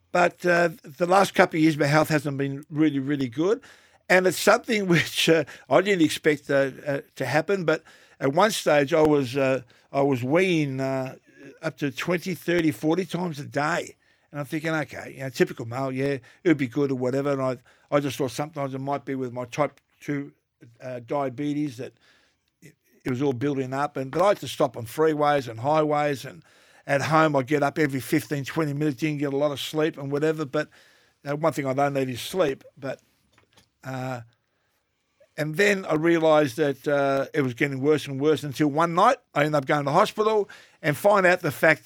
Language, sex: English, male